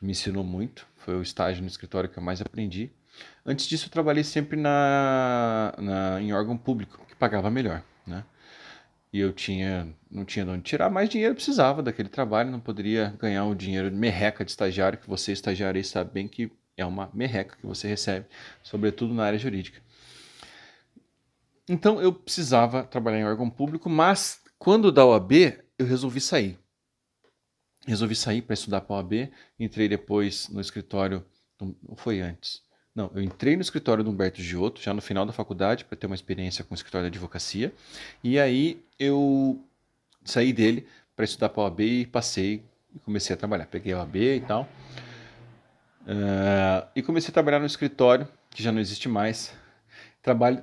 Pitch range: 95-125 Hz